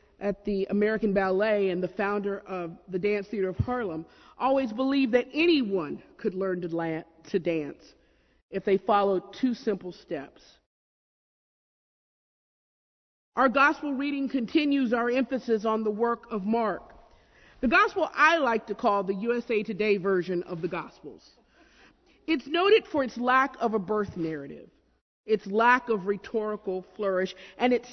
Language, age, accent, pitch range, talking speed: English, 50-69, American, 200-265 Hz, 145 wpm